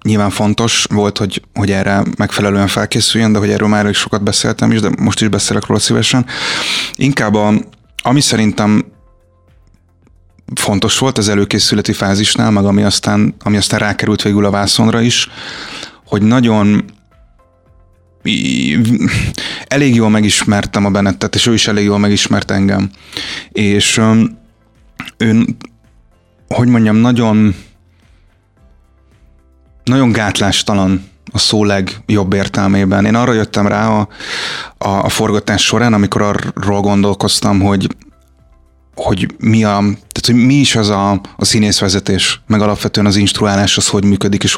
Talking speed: 130 wpm